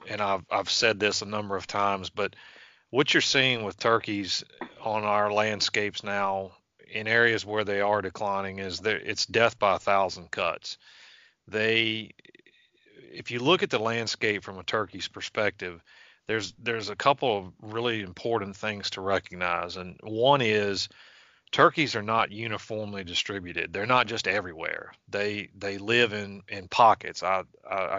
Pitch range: 100-115 Hz